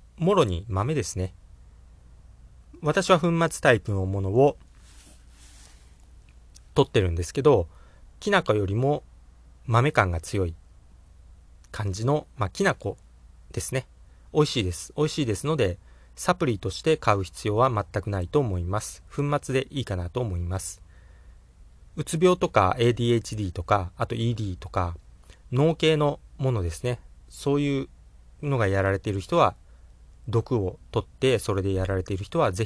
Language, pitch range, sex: Japanese, 90-130 Hz, male